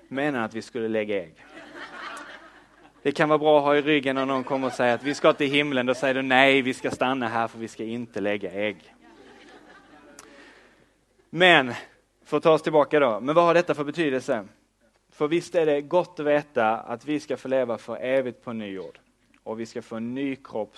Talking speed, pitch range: 210 wpm, 110-140 Hz